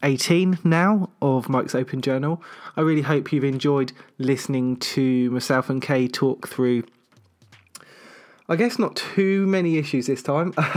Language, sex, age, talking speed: English, male, 20-39, 145 wpm